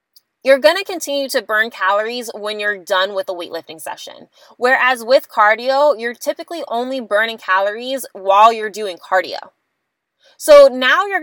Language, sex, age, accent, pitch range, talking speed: English, female, 20-39, American, 195-260 Hz, 150 wpm